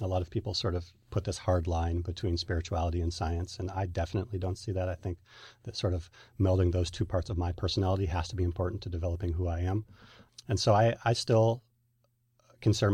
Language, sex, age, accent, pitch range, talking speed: English, male, 40-59, American, 90-110 Hz, 220 wpm